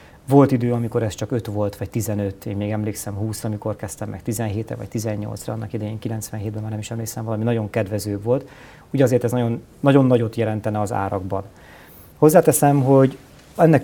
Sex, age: male, 40-59